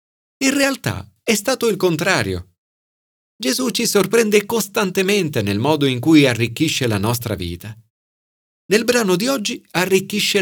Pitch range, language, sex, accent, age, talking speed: 110-190 Hz, Italian, male, native, 40-59, 130 wpm